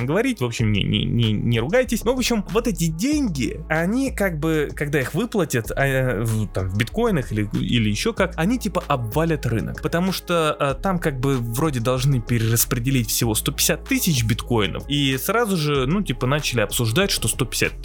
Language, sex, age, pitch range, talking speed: Russian, male, 20-39, 115-175 Hz, 185 wpm